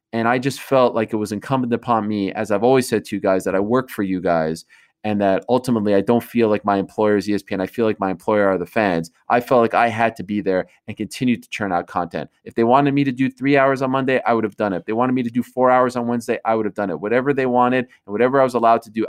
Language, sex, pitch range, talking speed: English, male, 105-125 Hz, 300 wpm